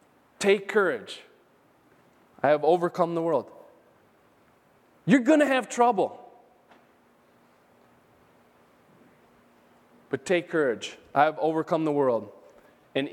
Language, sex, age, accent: English, male, 20-39, American